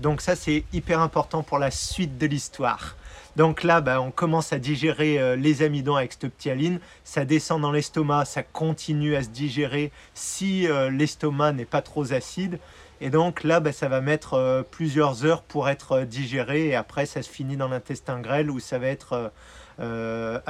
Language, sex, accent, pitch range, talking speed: French, male, French, 130-155 Hz, 195 wpm